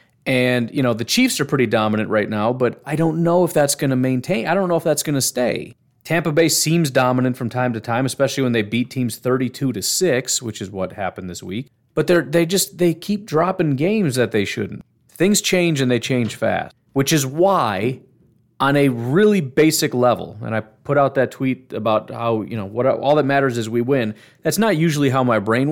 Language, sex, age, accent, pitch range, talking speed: English, male, 30-49, American, 120-165 Hz, 225 wpm